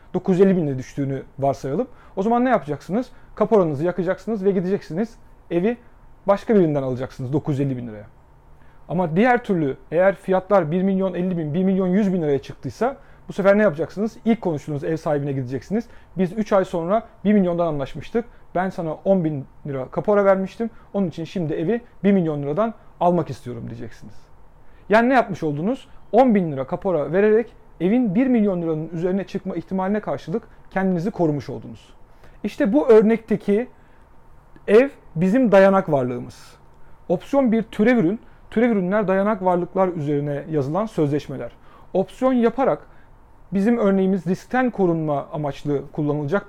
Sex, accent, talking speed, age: male, native, 145 wpm, 40-59